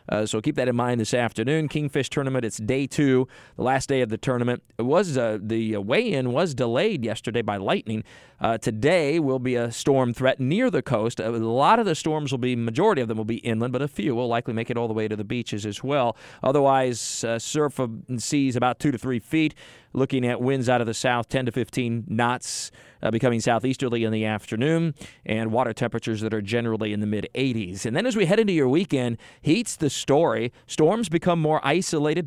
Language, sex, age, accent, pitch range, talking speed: English, male, 40-59, American, 115-145 Hz, 220 wpm